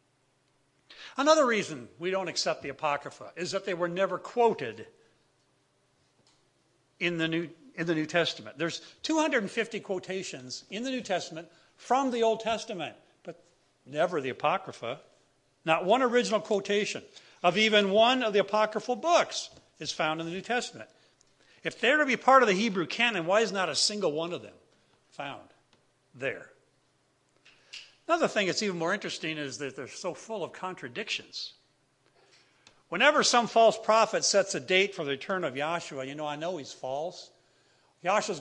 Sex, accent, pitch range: male, American, 150-210 Hz